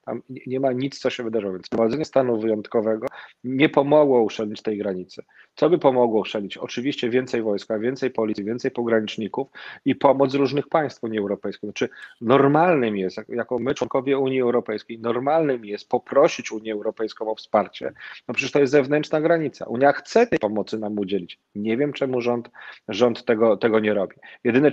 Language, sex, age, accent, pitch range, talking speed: Polish, male, 40-59, native, 115-135 Hz, 170 wpm